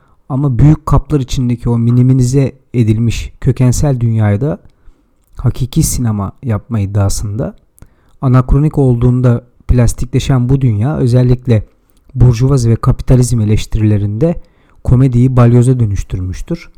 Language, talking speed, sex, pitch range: Turkish, 95 wpm, male, 115-160 Hz